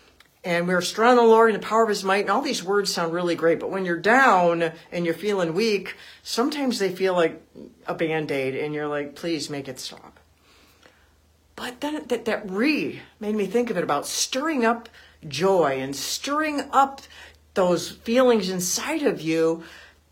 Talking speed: 190 wpm